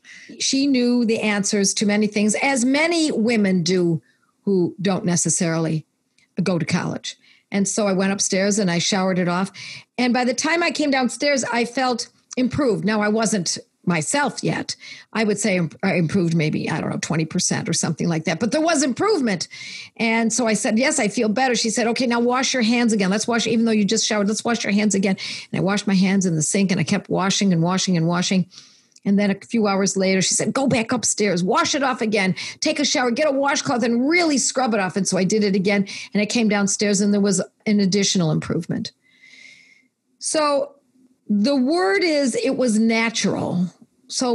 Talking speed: 210 wpm